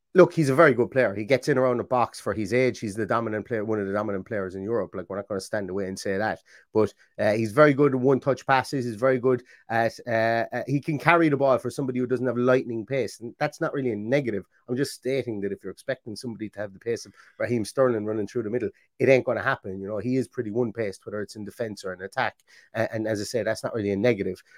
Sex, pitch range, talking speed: male, 115-135 Hz, 280 wpm